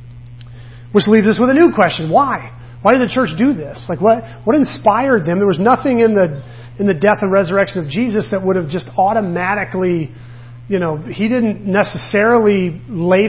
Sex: male